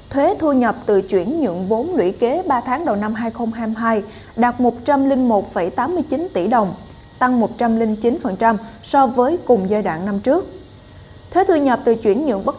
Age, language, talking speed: 20-39, Vietnamese, 160 wpm